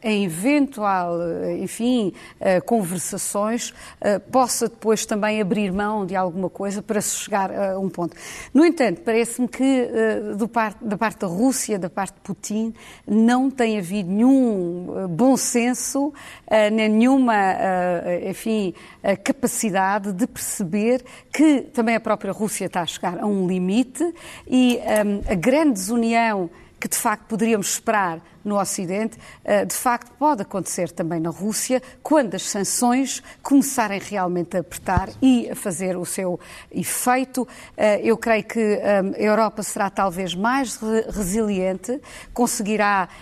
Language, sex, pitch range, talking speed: Portuguese, female, 190-240 Hz, 130 wpm